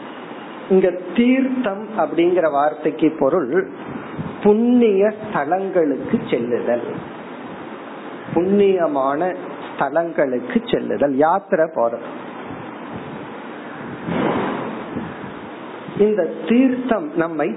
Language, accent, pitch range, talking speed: Tamil, native, 155-210 Hz, 35 wpm